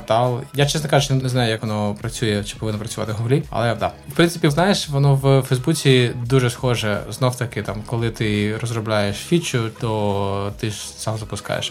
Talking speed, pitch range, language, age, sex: 175 wpm, 115-140 Hz, Ukrainian, 20-39, male